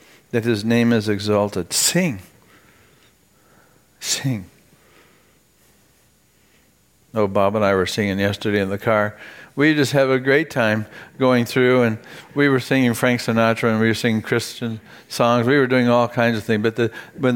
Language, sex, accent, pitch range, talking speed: English, male, American, 105-130 Hz, 160 wpm